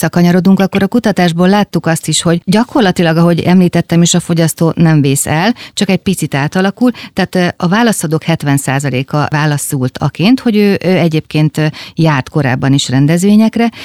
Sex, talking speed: female, 145 wpm